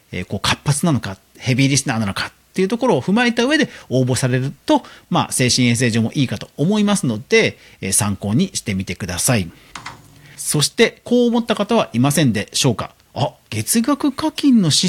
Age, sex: 40-59, male